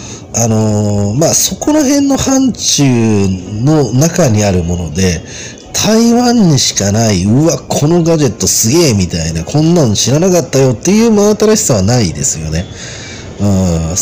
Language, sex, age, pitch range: Japanese, male, 40-59, 100-170 Hz